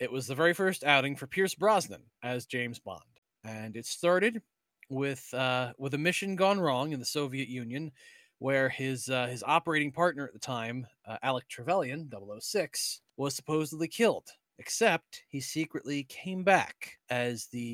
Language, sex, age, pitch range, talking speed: English, male, 30-49, 125-165 Hz, 165 wpm